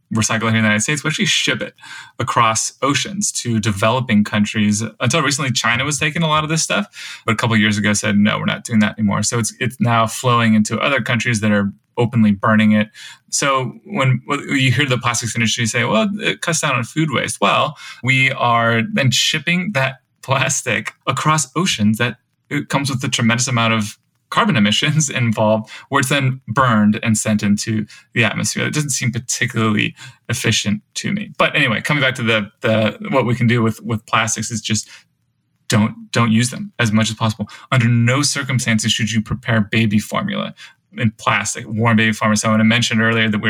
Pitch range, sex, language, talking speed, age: 110-130 Hz, male, English, 200 wpm, 20-39